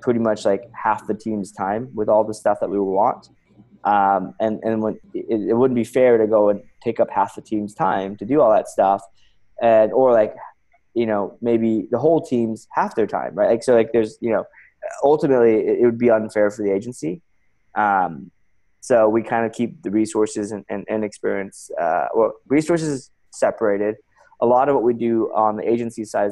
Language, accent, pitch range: English, American, 100-115 Hz